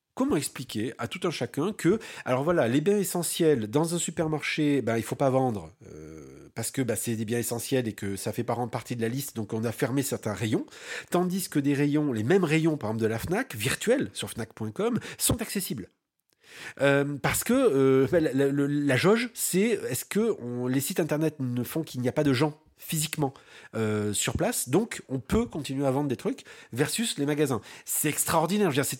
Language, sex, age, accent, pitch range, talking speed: French, male, 40-59, French, 125-165 Hz, 225 wpm